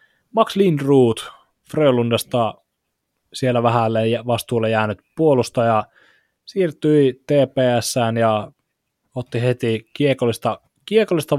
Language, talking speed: Finnish, 80 wpm